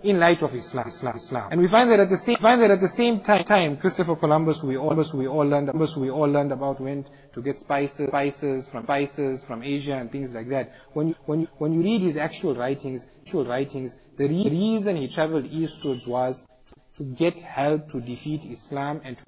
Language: English